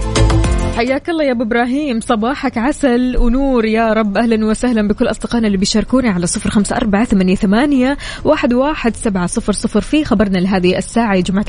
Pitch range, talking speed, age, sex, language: 185-230 Hz, 135 wpm, 20-39, female, Arabic